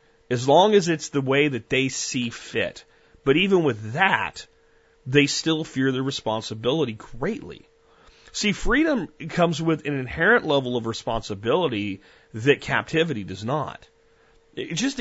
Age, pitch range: 30-49, 115-155 Hz